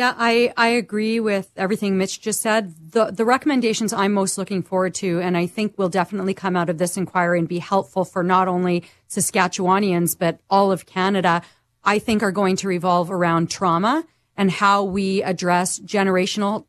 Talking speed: 185 wpm